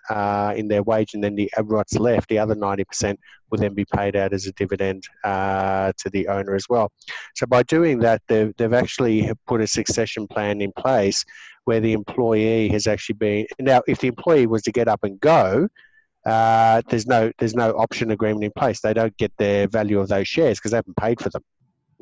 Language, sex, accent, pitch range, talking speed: English, male, Australian, 105-120 Hz, 215 wpm